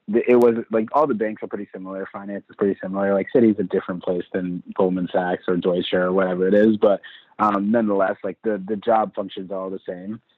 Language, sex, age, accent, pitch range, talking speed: English, male, 20-39, American, 95-105 Hz, 220 wpm